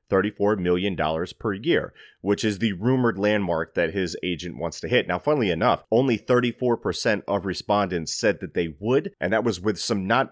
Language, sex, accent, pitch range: English, male, American, 90-115 Hz